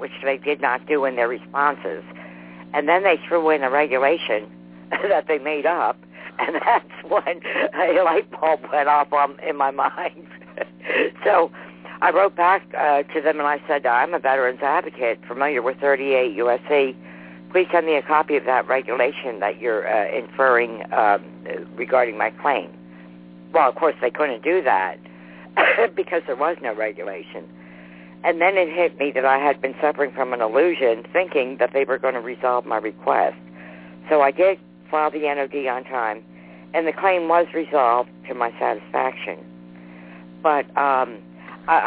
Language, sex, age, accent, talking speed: English, female, 60-79, American, 165 wpm